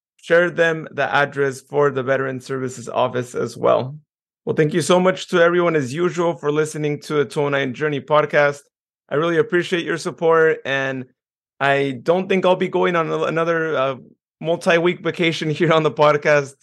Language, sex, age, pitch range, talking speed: English, male, 30-49, 130-150 Hz, 175 wpm